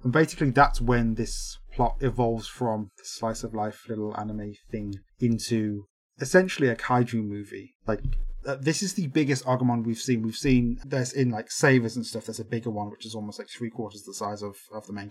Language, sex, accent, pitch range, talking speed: English, male, British, 115-140 Hz, 210 wpm